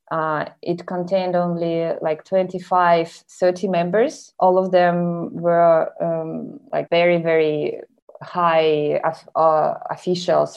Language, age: English, 20-39